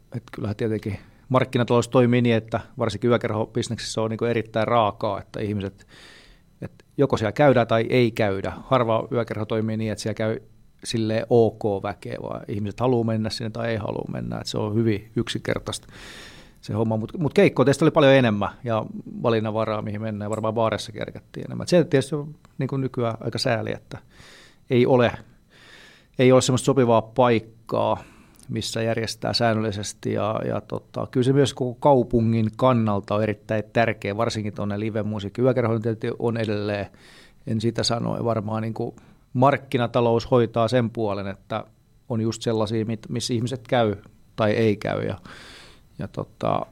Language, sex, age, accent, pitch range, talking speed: Finnish, male, 40-59, native, 110-125 Hz, 155 wpm